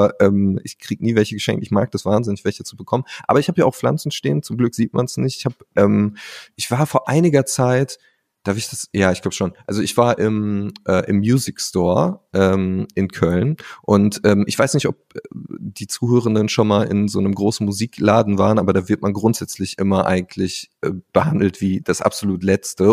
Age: 30-49